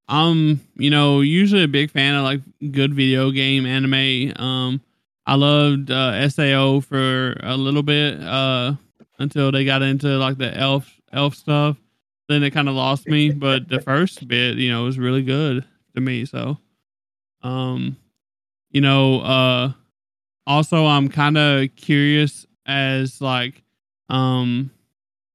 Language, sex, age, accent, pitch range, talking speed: English, male, 20-39, American, 130-145 Hz, 145 wpm